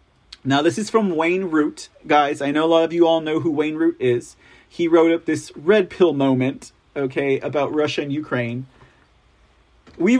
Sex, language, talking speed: male, English, 190 wpm